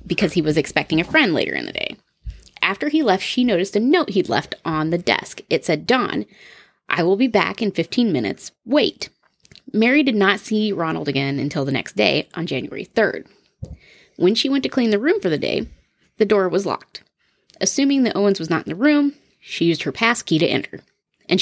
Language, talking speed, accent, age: English, 215 wpm, American, 20-39